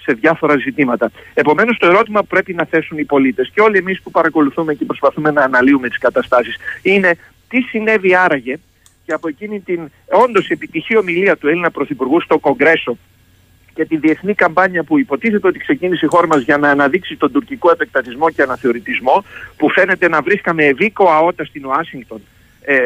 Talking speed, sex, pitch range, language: 175 wpm, male, 150-205 Hz, Greek